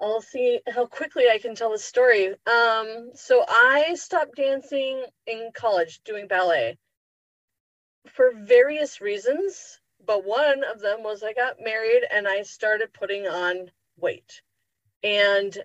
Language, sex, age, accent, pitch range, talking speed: English, female, 30-49, American, 195-280 Hz, 140 wpm